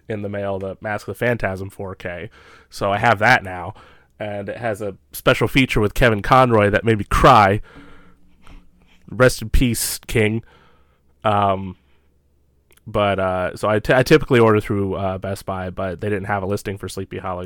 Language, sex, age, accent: English, male, 20-39, American